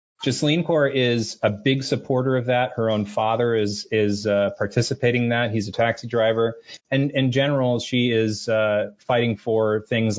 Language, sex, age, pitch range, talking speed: English, male, 30-49, 105-120 Hz, 175 wpm